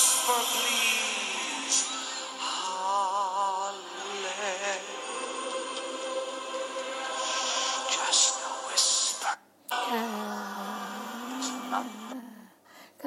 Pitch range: 215-265 Hz